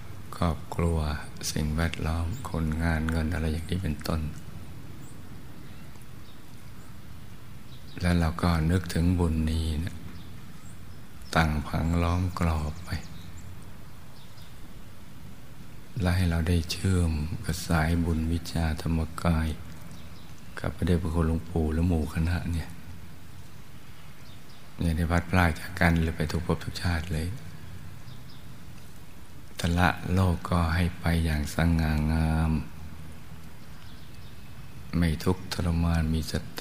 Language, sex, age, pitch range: Thai, male, 60-79, 80-90 Hz